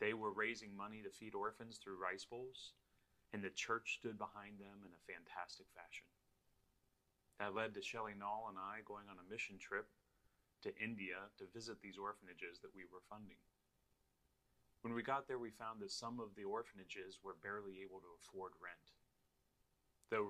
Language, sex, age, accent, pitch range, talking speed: English, male, 30-49, American, 100-115 Hz, 175 wpm